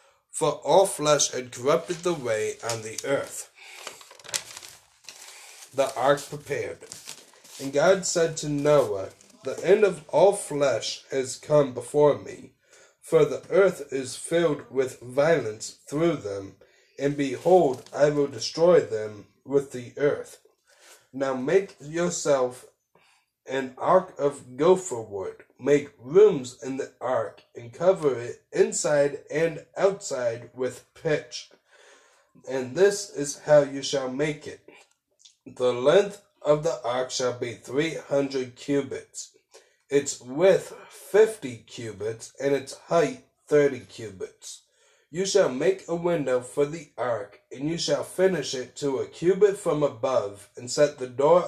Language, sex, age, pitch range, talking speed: English, male, 30-49, 135-200 Hz, 135 wpm